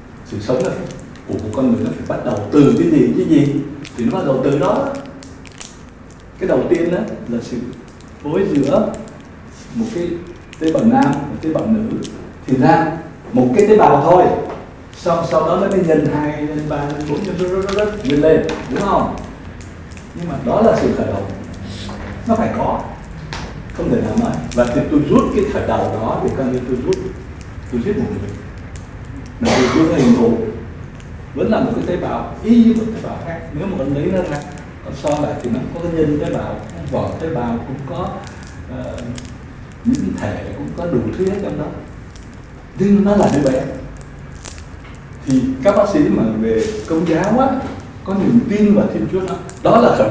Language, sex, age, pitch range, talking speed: Vietnamese, male, 60-79, 120-195 Hz, 185 wpm